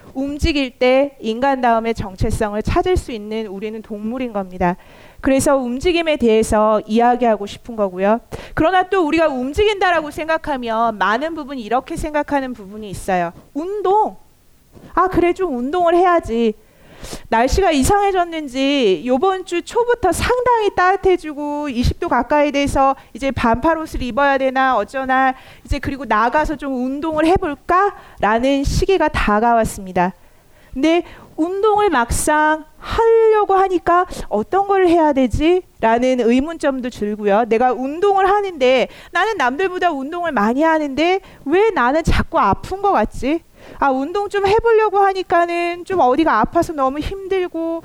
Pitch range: 245-350 Hz